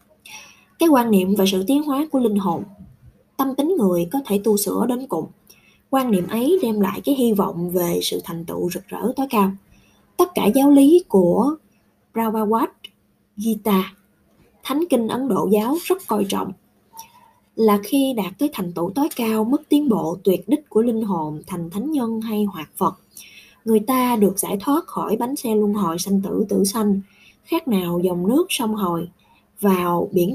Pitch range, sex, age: 190-245 Hz, female, 20-39